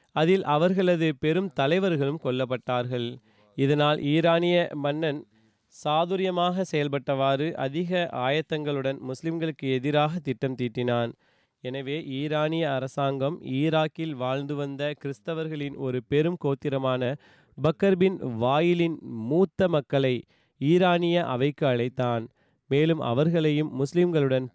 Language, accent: Tamil, native